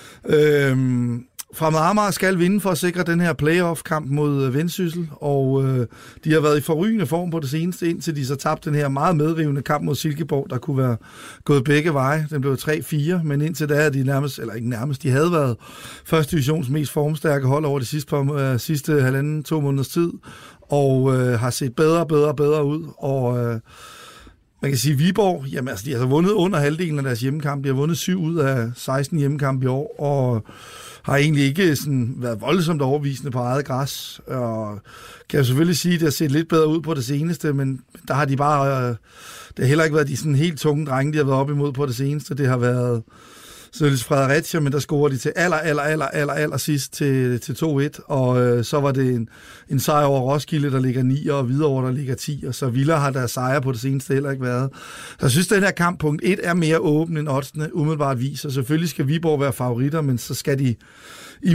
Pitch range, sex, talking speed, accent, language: 135-155 Hz, male, 225 wpm, native, Danish